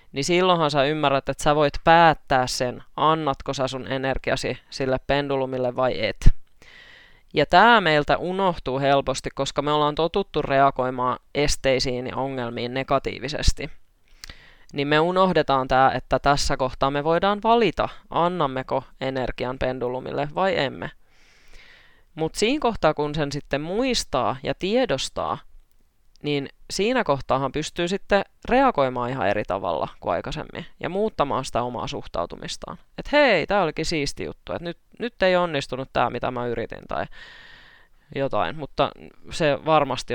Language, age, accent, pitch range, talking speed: Finnish, 20-39, native, 130-170 Hz, 135 wpm